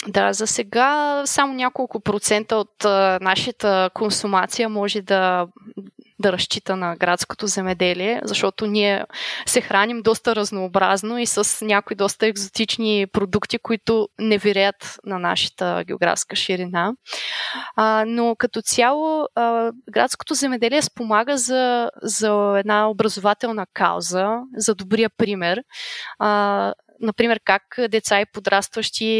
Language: Bulgarian